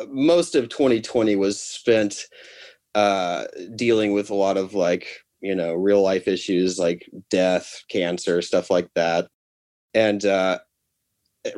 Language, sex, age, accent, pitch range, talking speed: English, male, 30-49, American, 95-115 Hz, 130 wpm